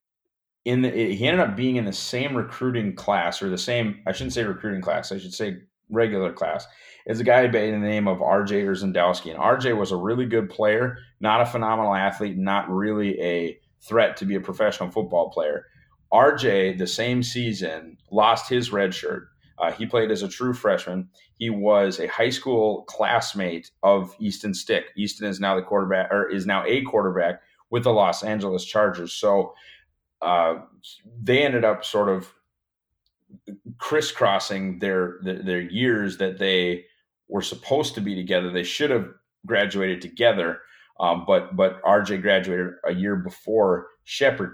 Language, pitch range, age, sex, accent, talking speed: English, 95-110 Hz, 30-49, male, American, 170 wpm